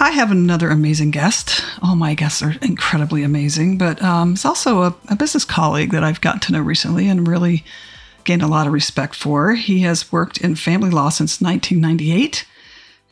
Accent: American